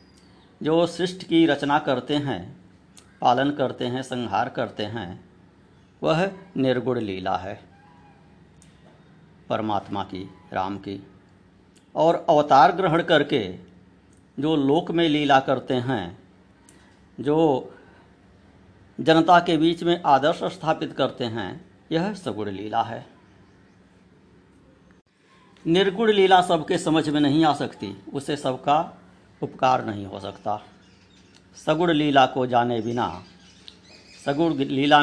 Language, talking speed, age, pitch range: Hindi, 110 wpm, 60-79, 95-160 Hz